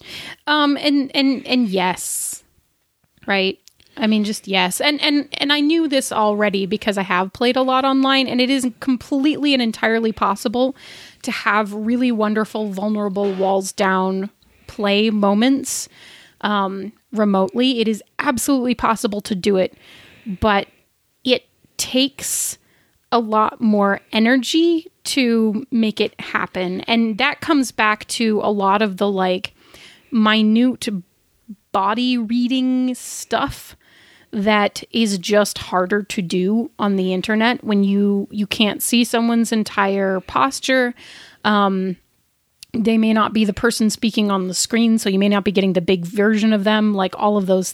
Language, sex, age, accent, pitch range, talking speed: English, female, 30-49, American, 200-240 Hz, 145 wpm